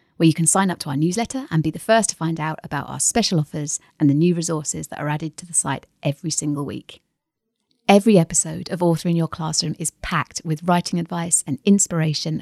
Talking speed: 220 wpm